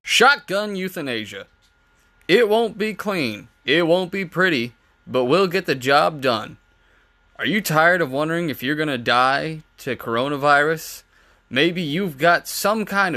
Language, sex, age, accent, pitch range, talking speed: English, male, 20-39, American, 130-190 Hz, 145 wpm